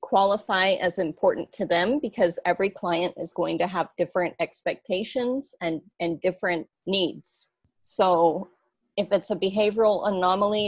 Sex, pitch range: female, 175-205 Hz